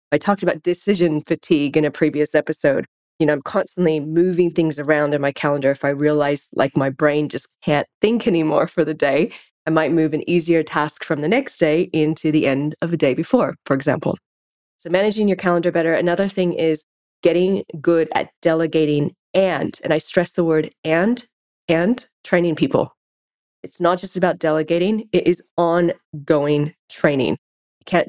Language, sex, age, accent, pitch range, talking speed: English, female, 20-39, American, 150-180 Hz, 175 wpm